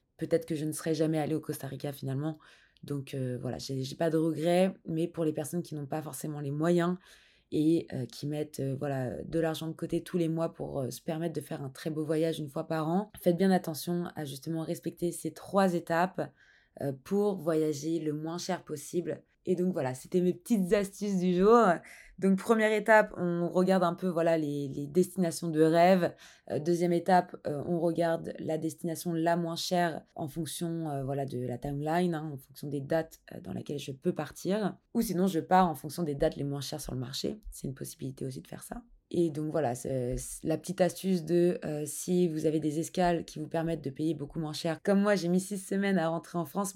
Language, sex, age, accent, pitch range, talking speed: French, female, 20-39, French, 155-175 Hz, 220 wpm